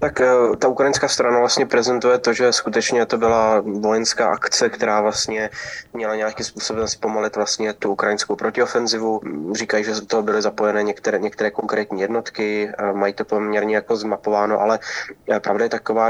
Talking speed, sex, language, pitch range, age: 155 wpm, male, Slovak, 105-110 Hz, 20-39